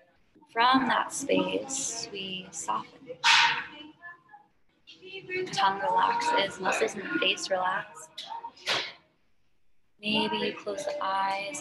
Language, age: English, 20-39